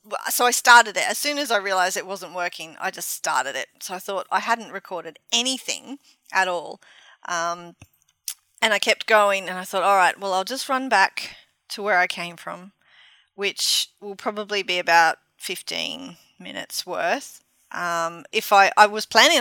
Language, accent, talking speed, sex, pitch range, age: English, Australian, 180 wpm, female, 185-240 Hz, 30-49